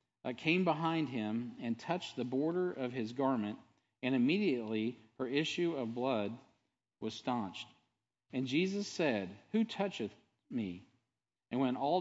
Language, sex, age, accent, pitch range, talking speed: English, male, 50-69, American, 115-160 Hz, 140 wpm